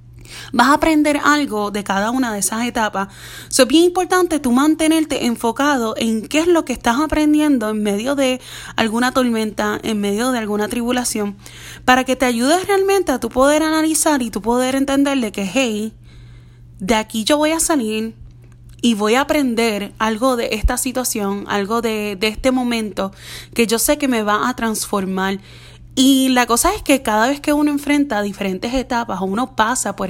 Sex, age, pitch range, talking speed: female, 20-39, 210-275 Hz, 185 wpm